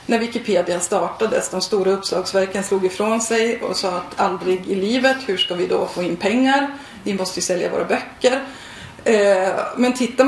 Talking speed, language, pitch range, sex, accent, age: 175 wpm, Swedish, 185-225 Hz, female, native, 30-49